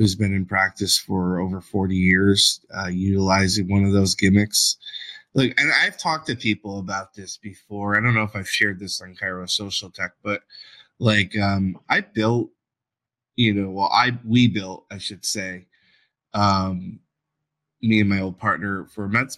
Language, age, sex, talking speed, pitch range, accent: English, 20-39, male, 175 wpm, 100-125 Hz, American